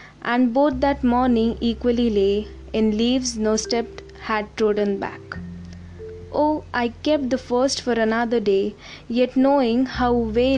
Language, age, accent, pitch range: Hindi, 20-39, native, 200-250 Hz